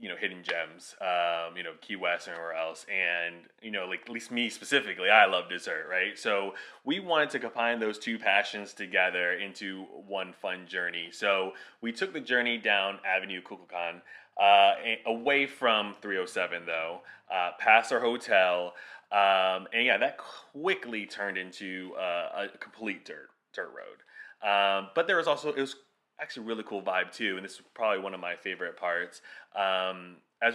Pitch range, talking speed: 90-115 Hz, 175 wpm